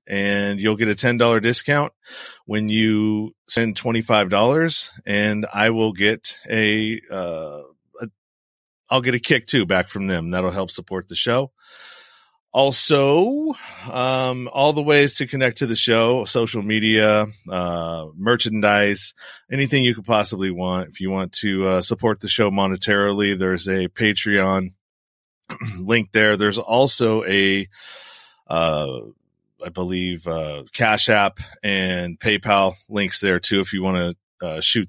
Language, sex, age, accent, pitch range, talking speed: English, male, 40-59, American, 95-115 Hz, 140 wpm